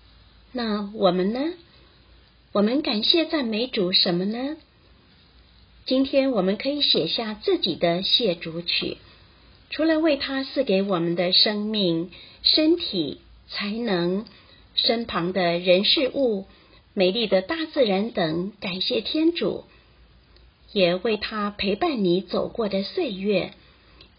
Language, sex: Chinese, female